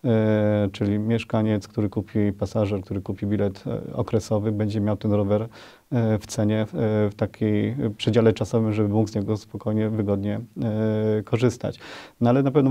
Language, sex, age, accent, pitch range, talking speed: Polish, male, 30-49, native, 105-115 Hz, 140 wpm